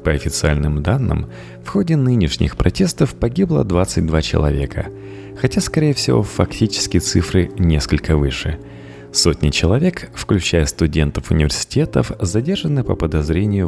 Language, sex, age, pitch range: Russian, male, 30-49, 75-115 Hz